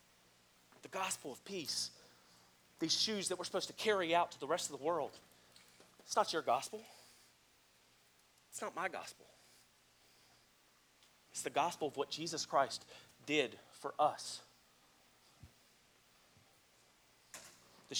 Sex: male